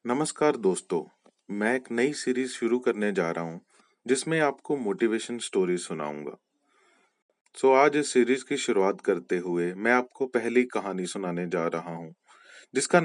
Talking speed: 155 wpm